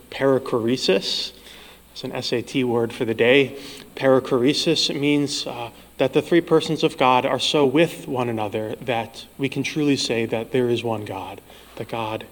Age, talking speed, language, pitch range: 30-49, 165 wpm, English, 115-140 Hz